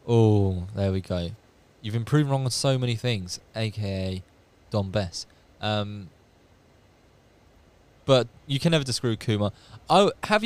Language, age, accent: English, 20-39, British